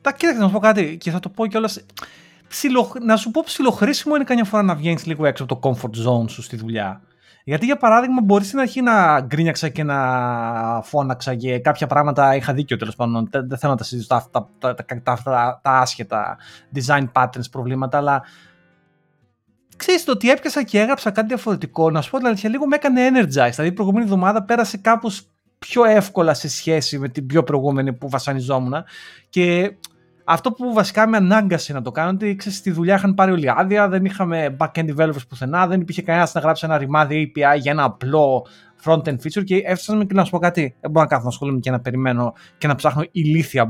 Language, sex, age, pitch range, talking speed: Greek, male, 30-49, 135-210 Hz, 210 wpm